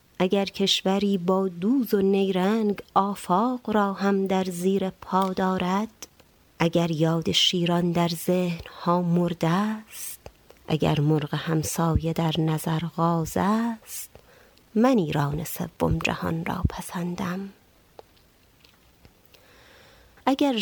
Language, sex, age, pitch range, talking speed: Persian, female, 30-49, 170-200 Hz, 100 wpm